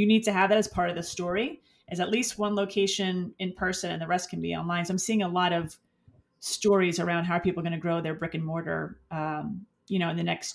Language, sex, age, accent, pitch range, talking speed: English, female, 30-49, American, 175-220 Hz, 265 wpm